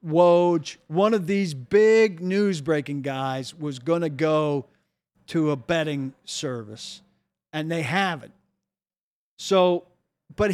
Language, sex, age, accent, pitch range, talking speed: English, male, 50-69, American, 150-195 Hz, 115 wpm